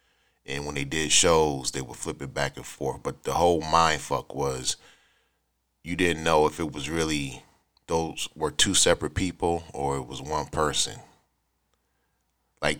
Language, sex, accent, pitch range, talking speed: English, male, American, 70-80 Hz, 165 wpm